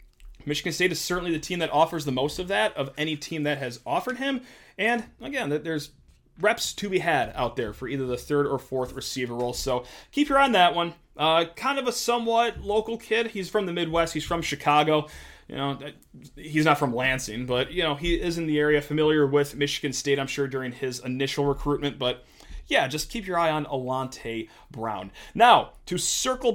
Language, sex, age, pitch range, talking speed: English, male, 30-49, 140-180 Hz, 210 wpm